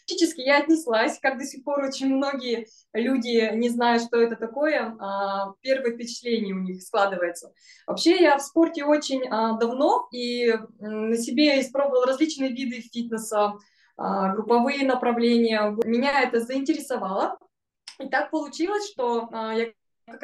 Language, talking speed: Russian, 130 wpm